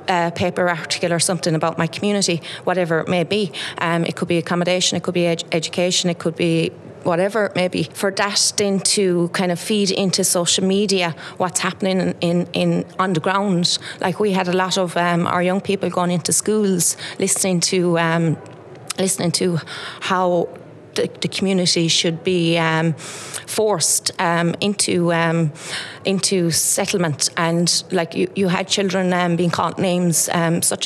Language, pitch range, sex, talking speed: English, 170-190 Hz, female, 175 wpm